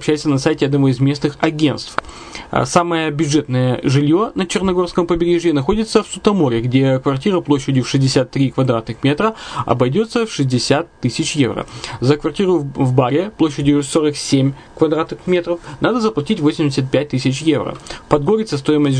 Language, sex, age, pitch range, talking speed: Russian, male, 20-39, 130-165 Hz, 140 wpm